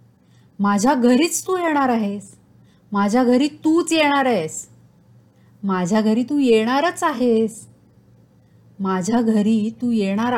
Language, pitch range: Marathi, 205-255 Hz